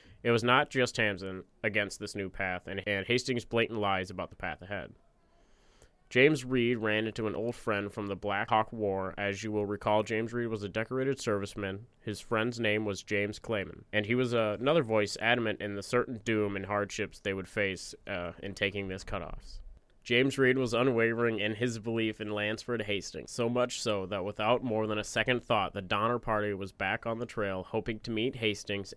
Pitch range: 100-115 Hz